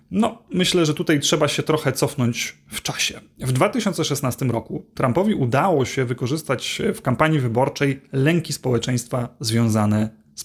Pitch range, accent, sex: 125-160 Hz, native, male